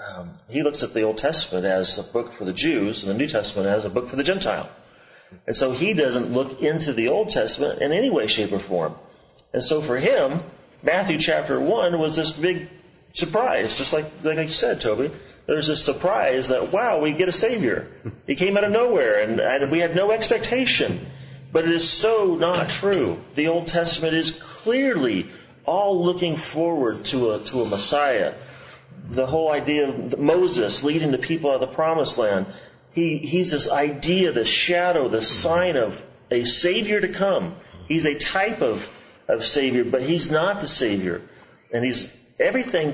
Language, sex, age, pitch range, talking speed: English, male, 30-49, 125-170 Hz, 185 wpm